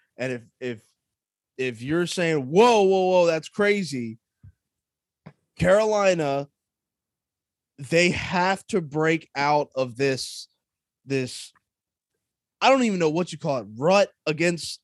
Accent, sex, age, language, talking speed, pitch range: American, male, 20-39, English, 120 wpm, 125-160 Hz